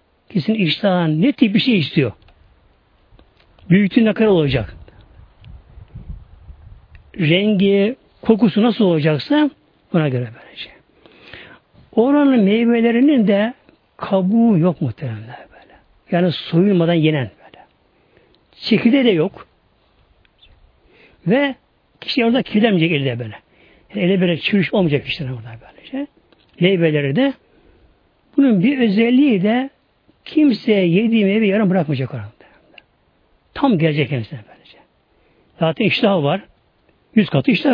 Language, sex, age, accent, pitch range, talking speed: Turkish, male, 60-79, native, 145-235 Hz, 105 wpm